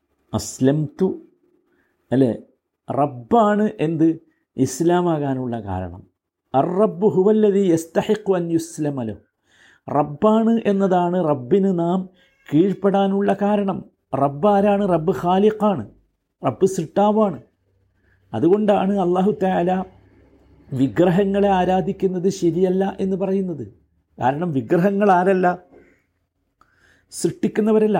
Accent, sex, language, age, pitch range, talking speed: native, male, Malayalam, 50-69, 160-205 Hz, 60 wpm